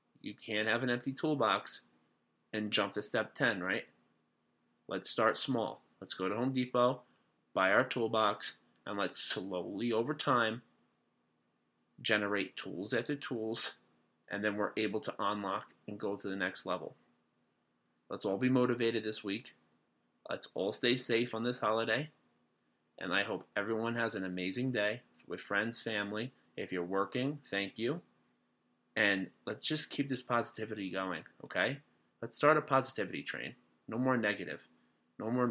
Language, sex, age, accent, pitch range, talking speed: English, male, 30-49, American, 80-115 Hz, 155 wpm